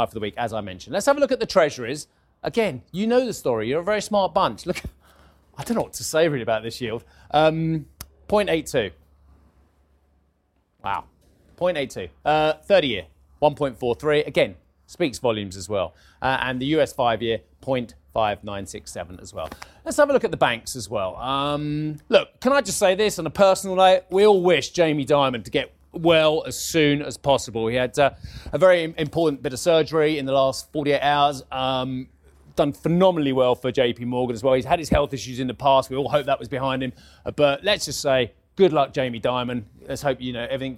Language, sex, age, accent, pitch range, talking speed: English, male, 30-49, British, 125-175 Hz, 200 wpm